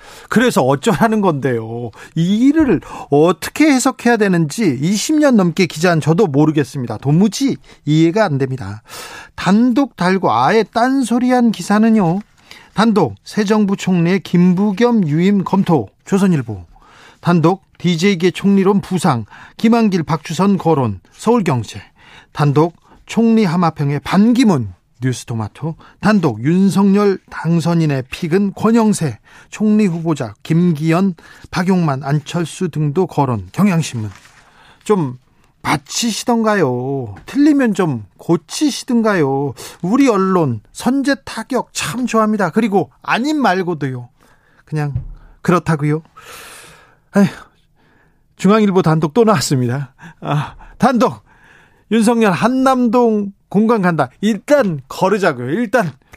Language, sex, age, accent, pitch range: Korean, male, 40-59, native, 150-215 Hz